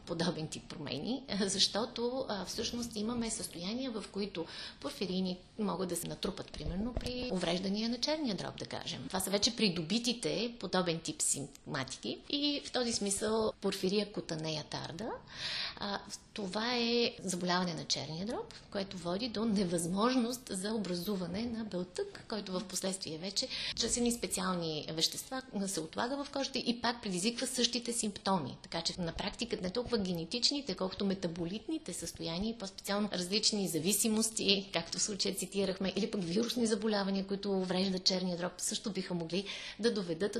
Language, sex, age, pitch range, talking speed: Bulgarian, female, 30-49, 175-225 Hz, 145 wpm